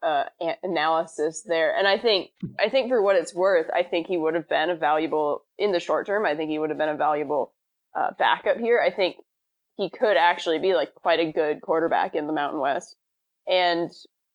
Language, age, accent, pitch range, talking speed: English, 20-39, American, 160-185 Hz, 215 wpm